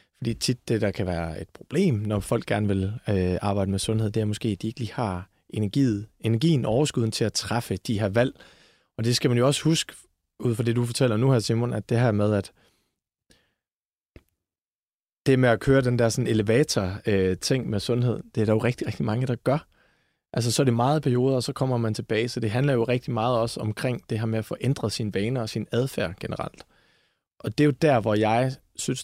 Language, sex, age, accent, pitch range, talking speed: Danish, male, 30-49, native, 105-130 Hz, 230 wpm